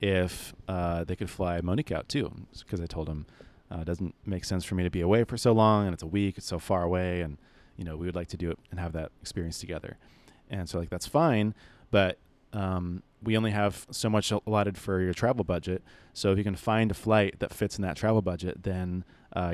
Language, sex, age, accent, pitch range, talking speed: English, male, 30-49, American, 90-105 Hz, 245 wpm